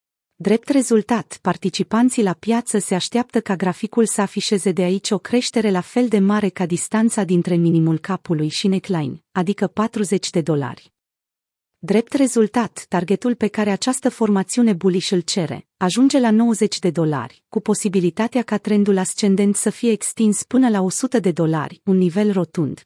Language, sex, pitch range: Romanian, female, 180-220 Hz